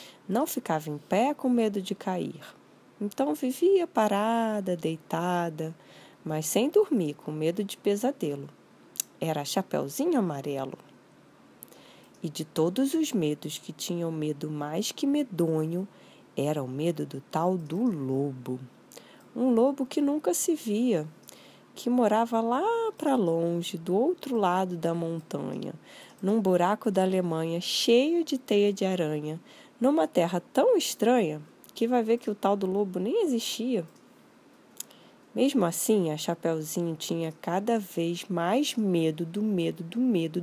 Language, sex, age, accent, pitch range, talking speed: Portuguese, female, 20-39, Brazilian, 165-255 Hz, 135 wpm